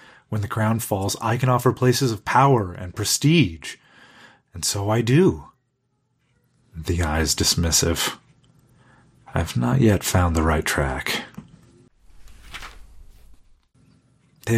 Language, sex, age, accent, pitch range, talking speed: English, male, 40-59, American, 85-125 Hz, 120 wpm